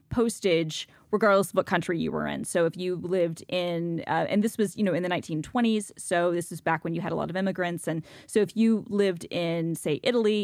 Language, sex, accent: English, female, American